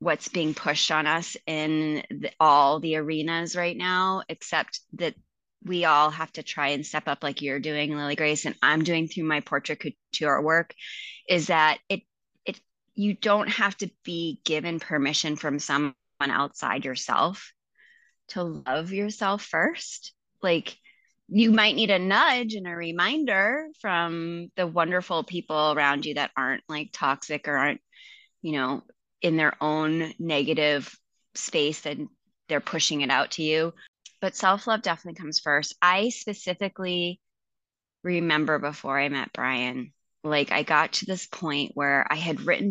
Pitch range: 150-185 Hz